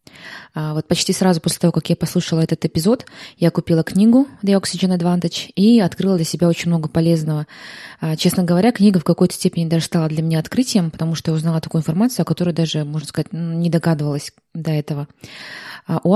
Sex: female